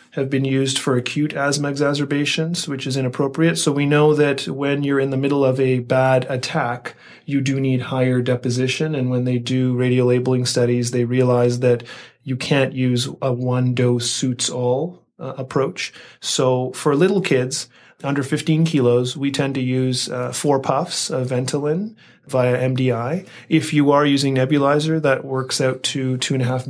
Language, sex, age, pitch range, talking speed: English, male, 30-49, 125-140 Hz, 160 wpm